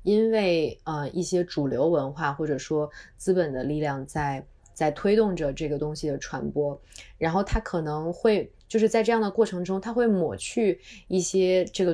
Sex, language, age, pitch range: female, Chinese, 20-39, 150-190 Hz